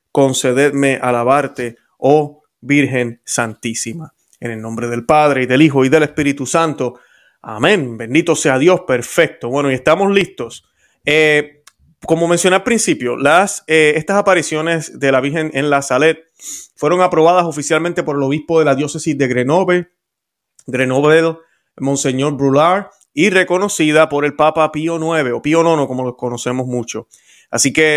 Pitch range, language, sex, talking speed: 130-165 Hz, Spanish, male, 150 wpm